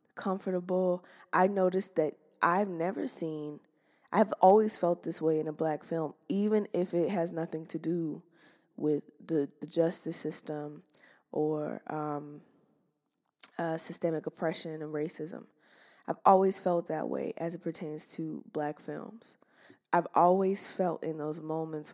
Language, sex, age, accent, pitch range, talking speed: English, female, 20-39, American, 150-175 Hz, 140 wpm